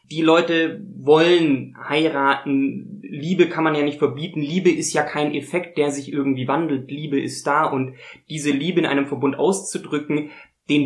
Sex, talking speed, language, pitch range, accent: male, 165 wpm, German, 140-165 Hz, German